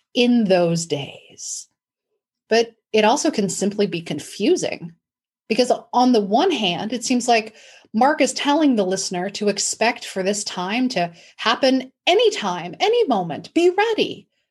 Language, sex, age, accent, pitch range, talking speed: English, female, 30-49, American, 185-250 Hz, 150 wpm